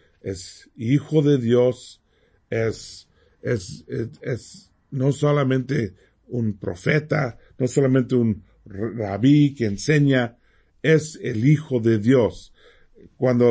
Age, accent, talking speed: 50-69, Mexican, 105 wpm